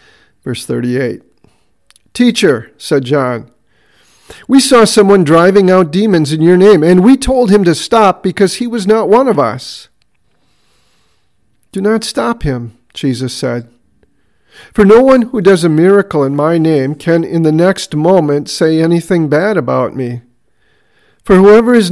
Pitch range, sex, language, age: 145-210 Hz, male, English, 50-69